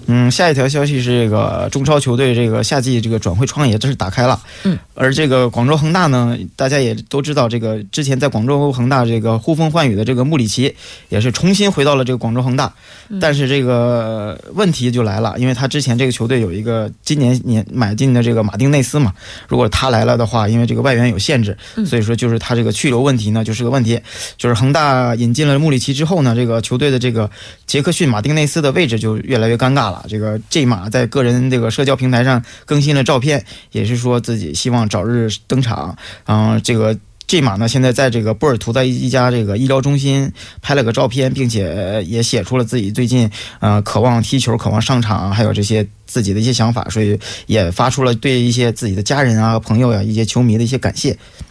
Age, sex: 20-39, male